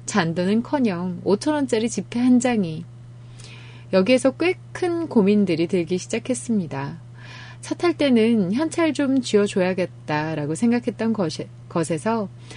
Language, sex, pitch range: Korean, female, 155-235 Hz